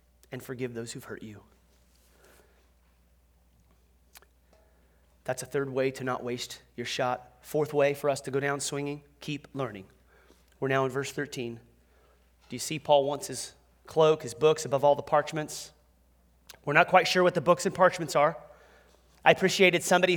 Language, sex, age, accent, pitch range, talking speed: English, male, 30-49, American, 115-180 Hz, 165 wpm